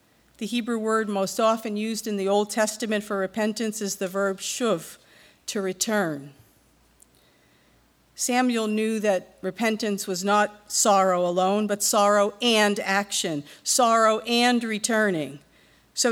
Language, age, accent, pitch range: English, 50-69, American, 190-225 Hz